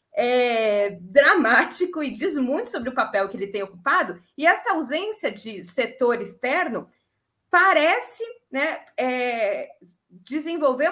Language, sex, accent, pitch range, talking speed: Portuguese, female, Brazilian, 225-310 Hz, 110 wpm